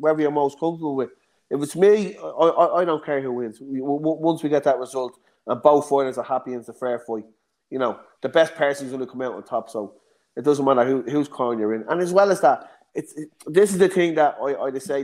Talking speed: 265 wpm